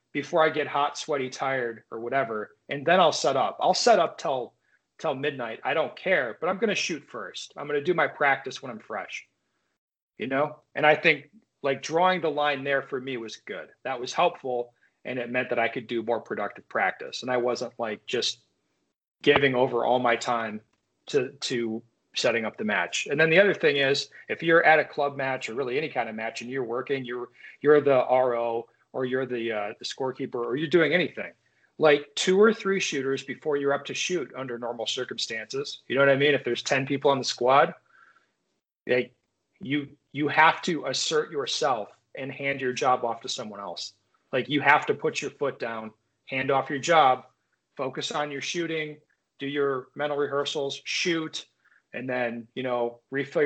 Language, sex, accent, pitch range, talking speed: English, male, American, 125-150 Hz, 205 wpm